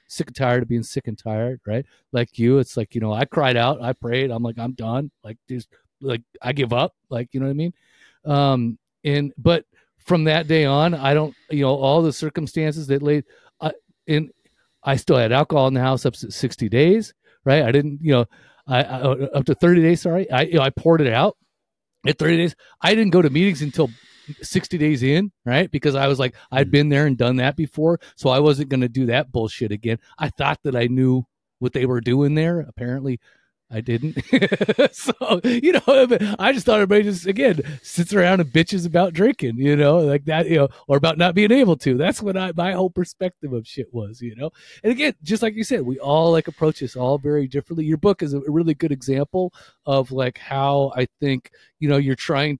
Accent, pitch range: American, 130-165 Hz